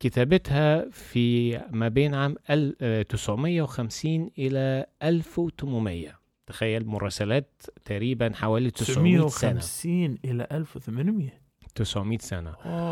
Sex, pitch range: male, 105-145 Hz